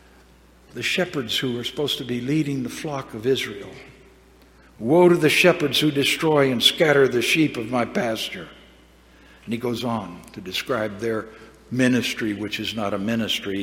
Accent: American